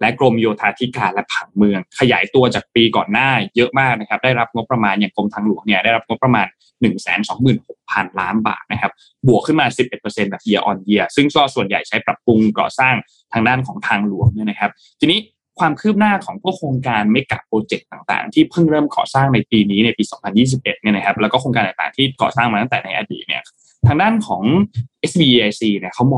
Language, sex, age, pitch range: Thai, male, 20-39, 105-135 Hz